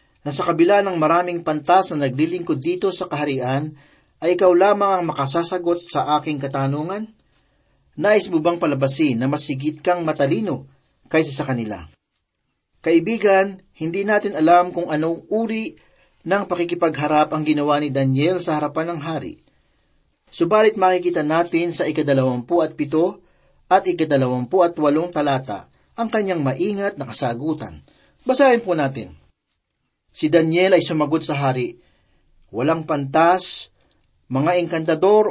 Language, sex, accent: Filipino, male, native